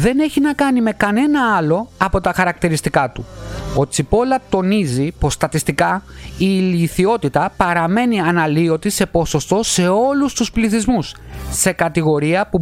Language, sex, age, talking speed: Greek, male, 30-49, 140 wpm